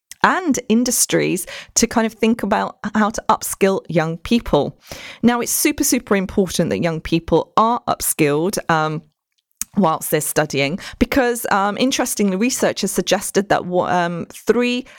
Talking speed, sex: 140 wpm, female